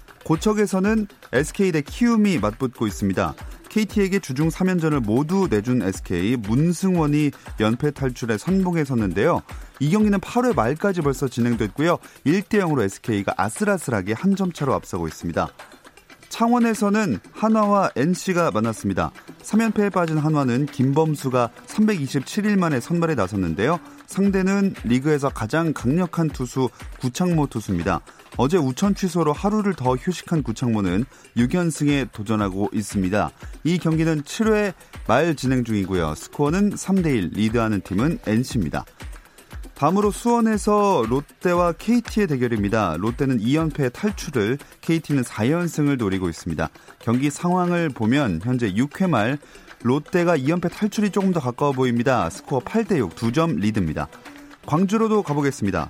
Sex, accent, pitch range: male, native, 115-190 Hz